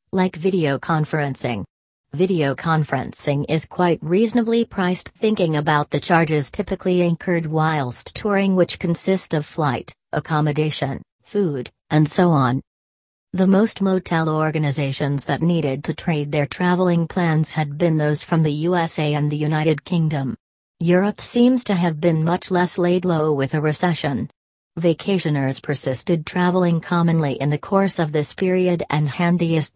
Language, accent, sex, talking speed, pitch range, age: English, American, female, 145 wpm, 145-180 Hz, 40-59